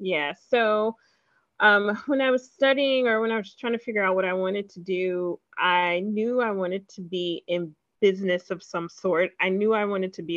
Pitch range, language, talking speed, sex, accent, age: 175-220 Hz, English, 215 wpm, female, American, 30-49